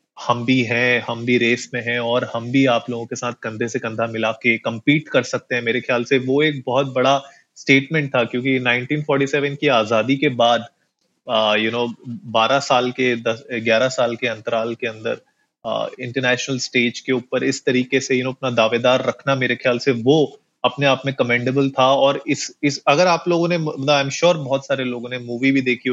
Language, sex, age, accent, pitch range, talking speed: Hindi, male, 30-49, native, 120-140 Hz, 205 wpm